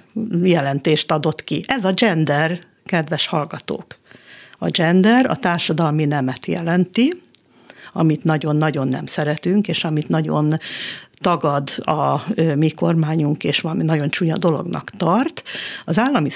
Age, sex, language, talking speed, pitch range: 50-69, female, Hungarian, 120 wpm, 155-185 Hz